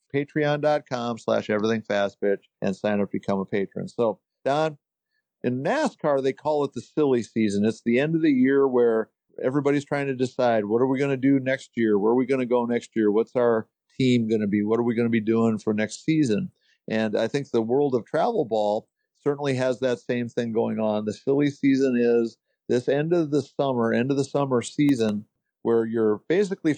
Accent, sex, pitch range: American, male, 115-145 Hz